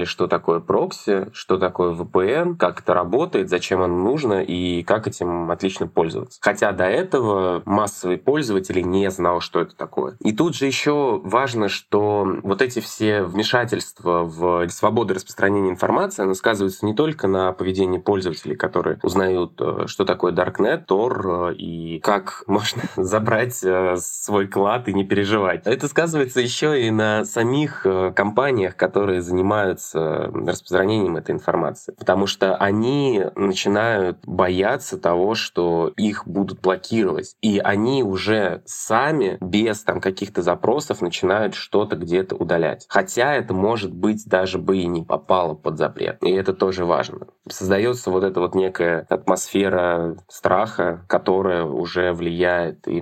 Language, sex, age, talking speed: Russian, male, 20-39, 140 wpm